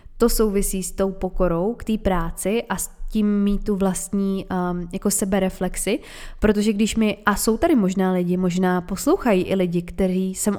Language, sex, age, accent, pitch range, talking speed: Czech, female, 20-39, native, 185-215 Hz, 175 wpm